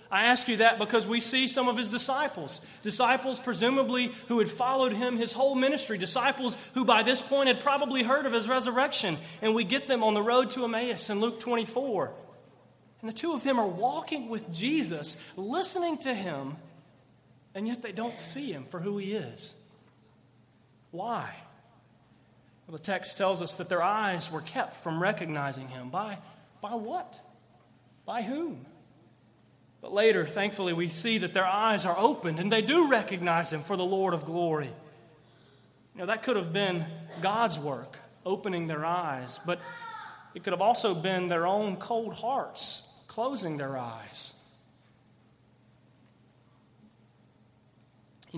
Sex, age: male, 30-49